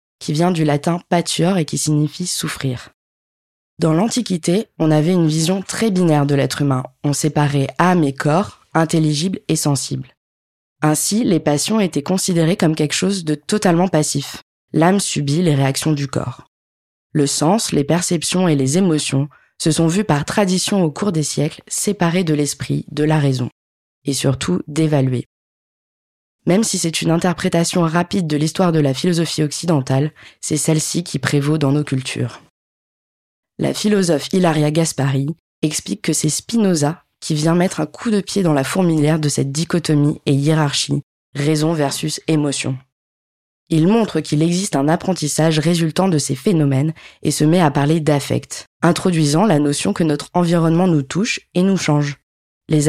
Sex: female